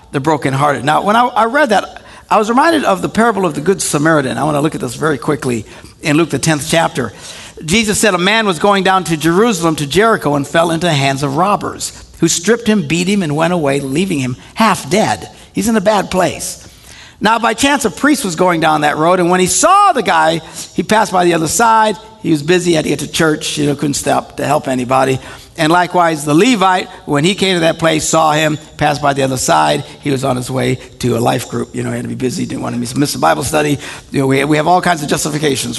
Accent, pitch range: American, 140-185 Hz